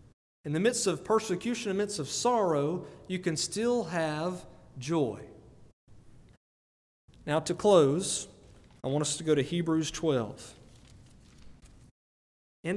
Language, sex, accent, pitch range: English, male, American, 130-175 Hz